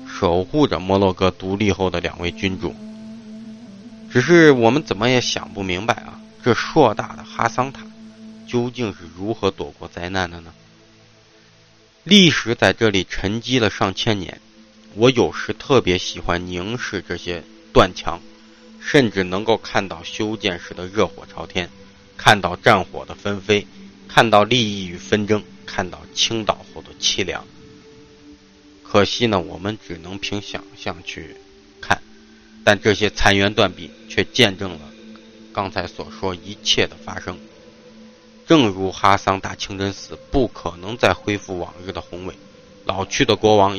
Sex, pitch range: male, 95-115 Hz